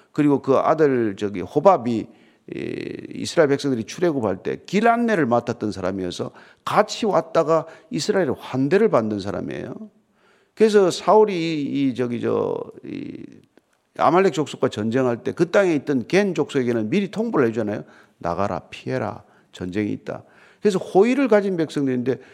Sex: male